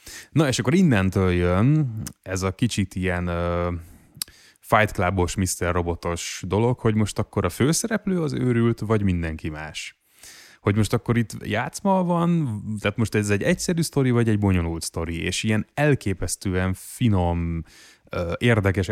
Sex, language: male, Hungarian